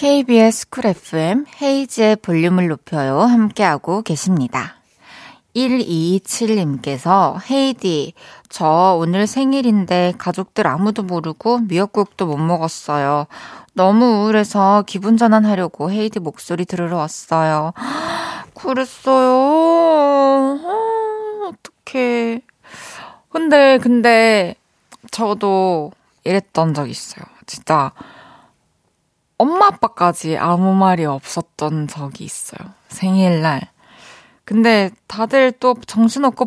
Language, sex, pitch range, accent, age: Korean, female, 180-250 Hz, native, 20-39